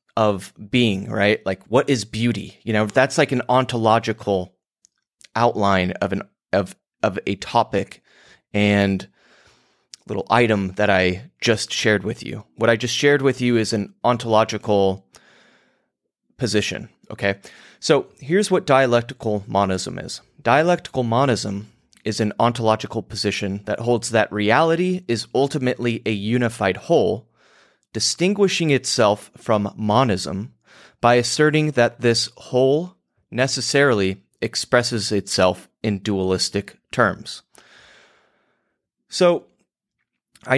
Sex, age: male, 30-49